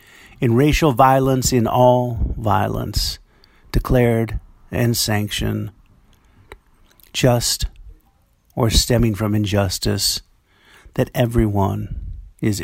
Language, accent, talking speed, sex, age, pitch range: English, American, 80 wpm, male, 50-69, 95-120 Hz